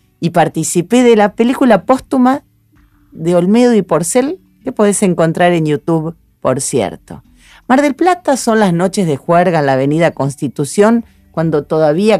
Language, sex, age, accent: Spanish, female, 40-59, Argentinian